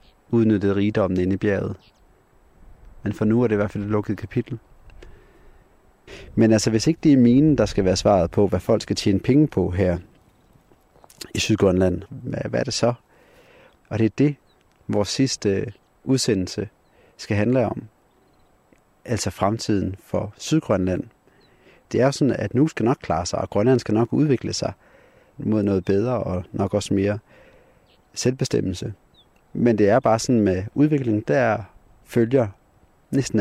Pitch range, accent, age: 95-115 Hz, native, 30-49